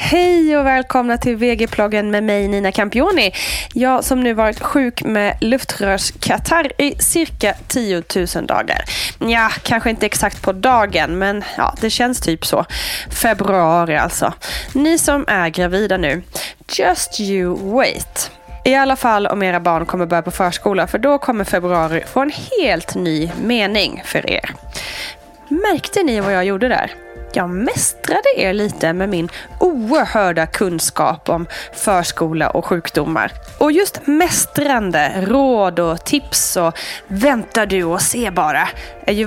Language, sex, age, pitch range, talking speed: Swedish, female, 20-39, 180-265 Hz, 145 wpm